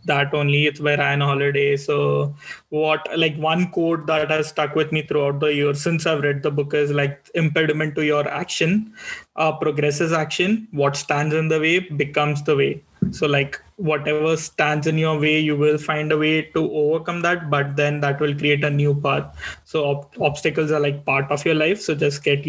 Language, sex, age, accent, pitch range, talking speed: English, male, 20-39, Indian, 145-155 Hz, 205 wpm